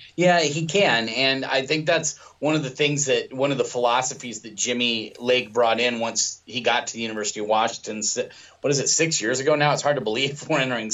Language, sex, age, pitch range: English, male, 30-49, 115-140 Hz